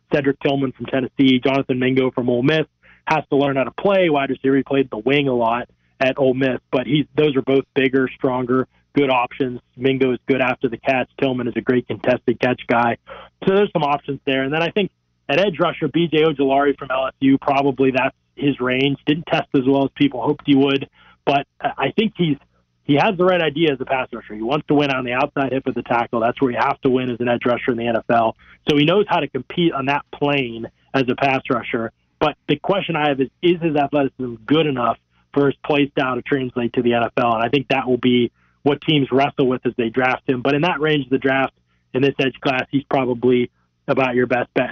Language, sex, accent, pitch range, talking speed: English, male, American, 125-150 Hz, 235 wpm